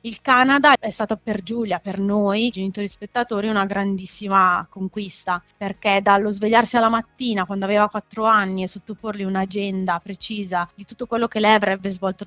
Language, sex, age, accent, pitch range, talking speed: Italian, female, 20-39, native, 190-215 Hz, 160 wpm